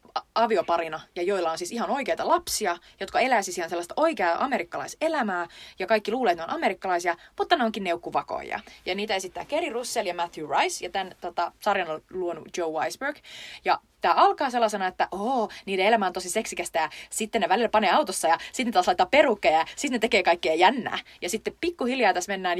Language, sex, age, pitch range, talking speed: Finnish, female, 30-49, 175-245 Hz, 200 wpm